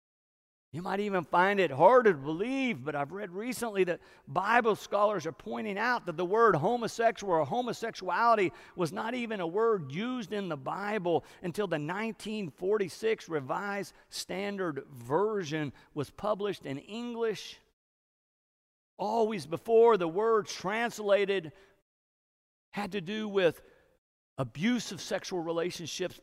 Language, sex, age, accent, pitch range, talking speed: English, male, 50-69, American, 160-215 Hz, 125 wpm